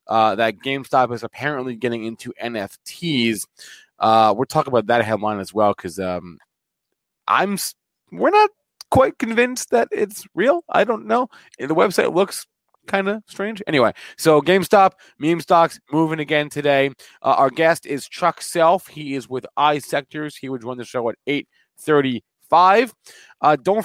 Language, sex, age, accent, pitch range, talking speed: English, male, 20-39, American, 120-180 Hz, 160 wpm